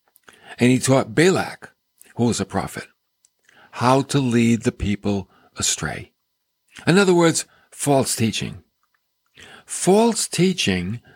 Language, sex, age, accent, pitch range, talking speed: English, male, 50-69, American, 105-135 Hz, 115 wpm